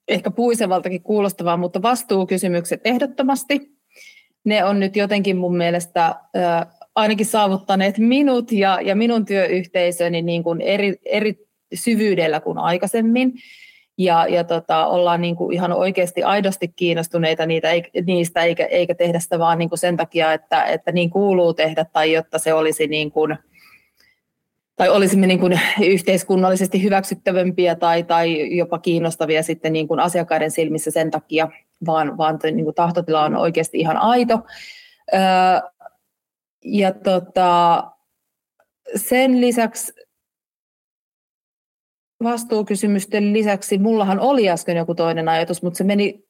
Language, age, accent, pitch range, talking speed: Finnish, 30-49, native, 170-215 Hz, 130 wpm